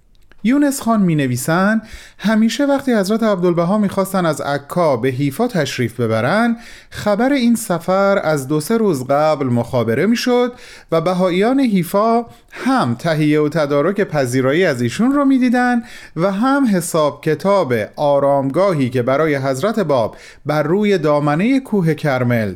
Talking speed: 140 wpm